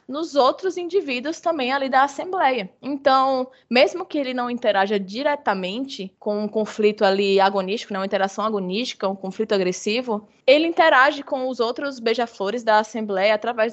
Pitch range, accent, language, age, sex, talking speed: 210-265 Hz, Brazilian, Portuguese, 20-39, female, 155 wpm